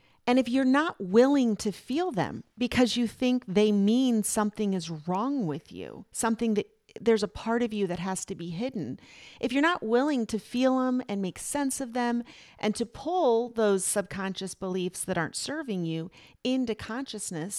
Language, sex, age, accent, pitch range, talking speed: English, female, 40-59, American, 190-250 Hz, 185 wpm